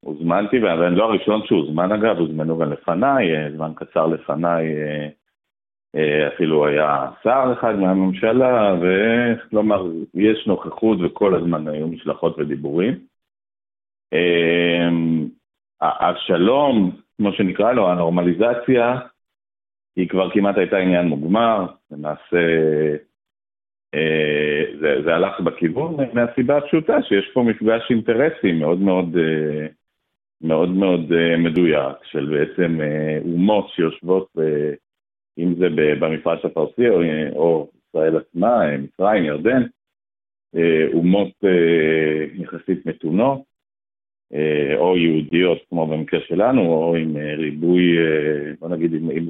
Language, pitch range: Hebrew, 80-105 Hz